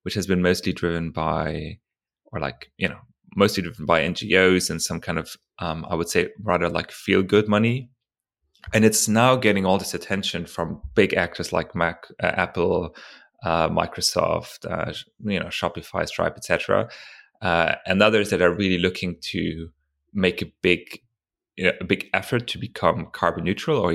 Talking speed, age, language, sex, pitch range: 175 wpm, 30-49, English, male, 85-105 Hz